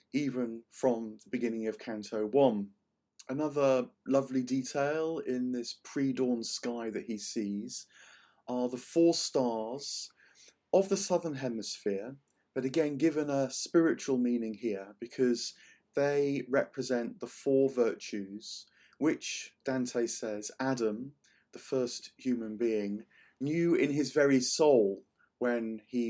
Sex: male